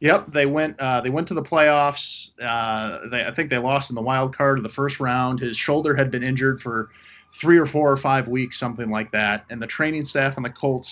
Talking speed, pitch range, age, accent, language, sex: 245 wpm, 115-135 Hz, 30-49, American, English, male